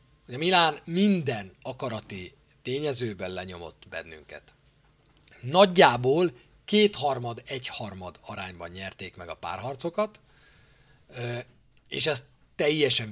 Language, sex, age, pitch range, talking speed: Hungarian, male, 40-59, 105-160 Hz, 80 wpm